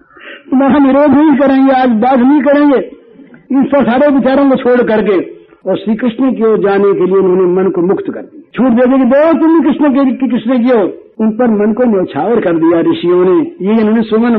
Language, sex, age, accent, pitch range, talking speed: Hindi, male, 60-79, native, 190-310 Hz, 215 wpm